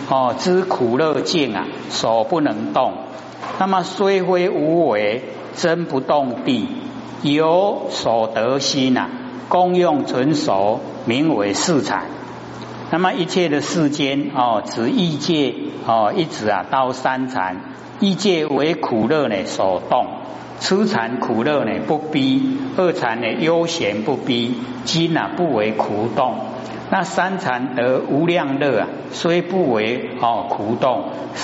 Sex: male